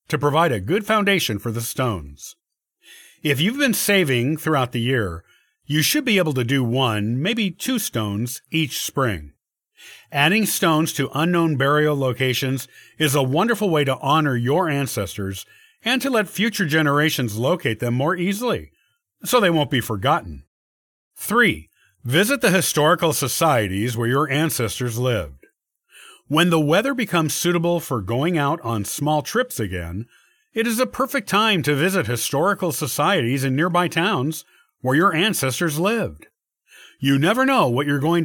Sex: male